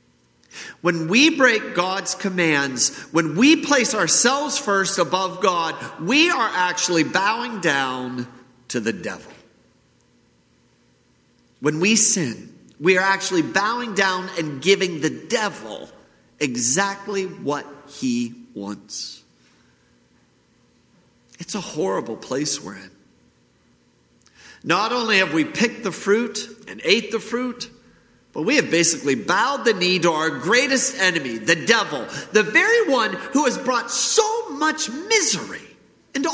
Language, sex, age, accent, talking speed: English, male, 50-69, American, 125 wpm